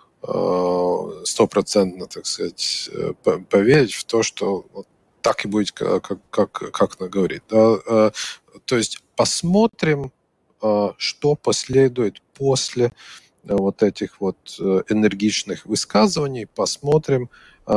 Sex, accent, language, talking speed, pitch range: male, native, Russian, 95 wpm, 100-130 Hz